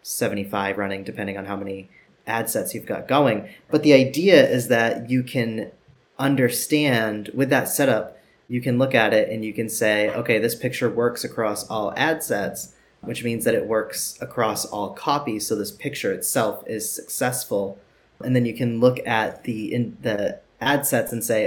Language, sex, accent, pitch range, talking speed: English, male, American, 105-125 Hz, 185 wpm